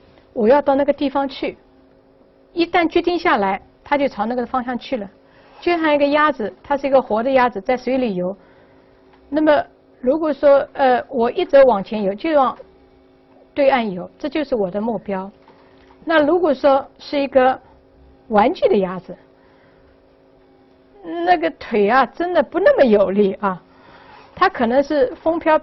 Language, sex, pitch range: Chinese, female, 205-295 Hz